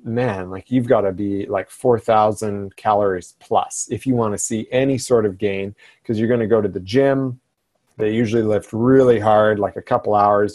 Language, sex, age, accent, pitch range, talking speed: English, male, 30-49, American, 100-120 Hz, 205 wpm